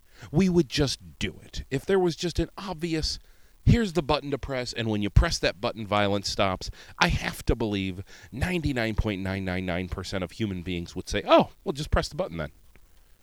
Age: 40-59